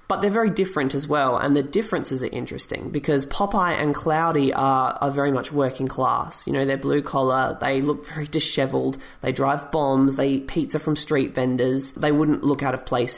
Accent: Australian